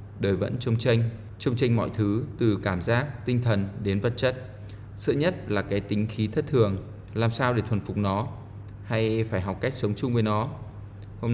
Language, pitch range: Vietnamese, 100-115 Hz